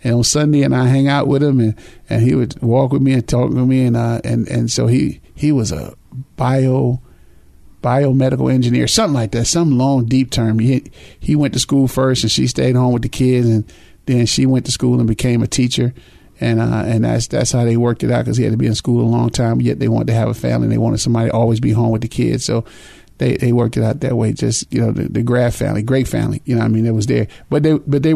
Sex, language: male, English